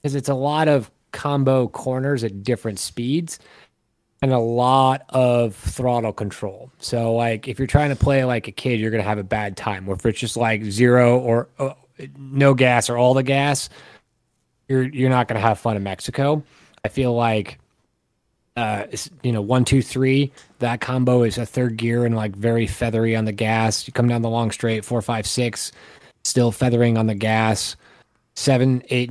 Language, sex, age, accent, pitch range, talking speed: English, male, 20-39, American, 110-130 Hz, 190 wpm